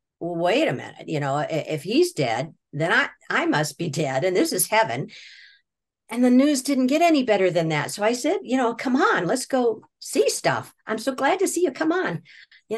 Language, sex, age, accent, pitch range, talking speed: English, female, 50-69, American, 160-245 Hz, 220 wpm